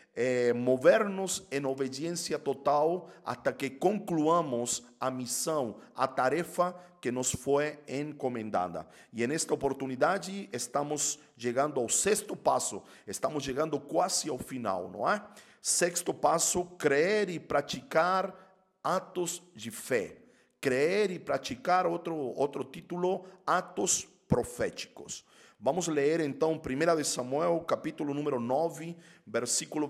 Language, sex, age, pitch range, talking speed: Portuguese, male, 50-69, 130-175 Hz, 115 wpm